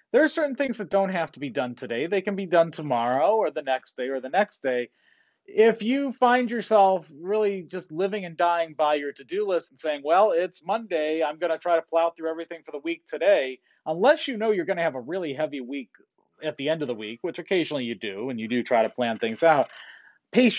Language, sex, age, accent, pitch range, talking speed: English, male, 30-49, American, 140-195 Hz, 245 wpm